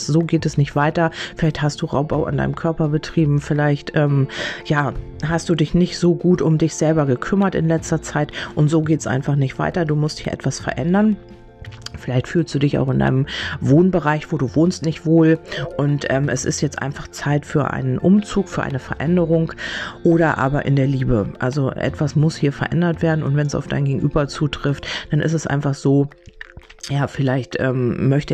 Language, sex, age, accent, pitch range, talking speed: German, female, 40-59, German, 135-165 Hz, 200 wpm